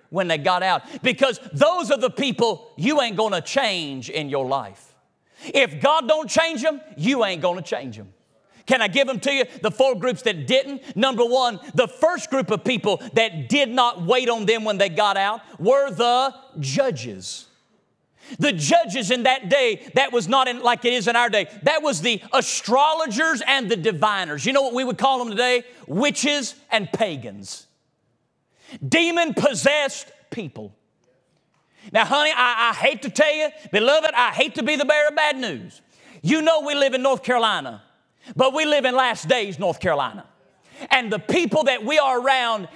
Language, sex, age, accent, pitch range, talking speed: English, male, 40-59, American, 220-280 Hz, 190 wpm